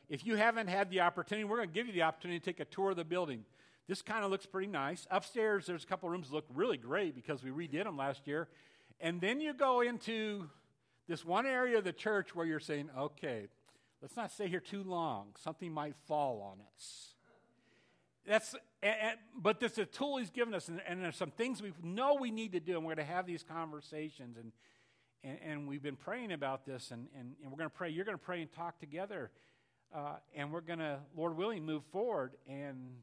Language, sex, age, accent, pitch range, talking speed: English, male, 50-69, American, 140-195 Hz, 220 wpm